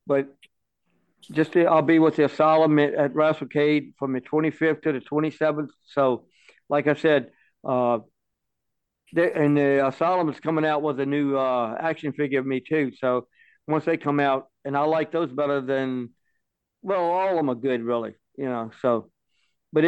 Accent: American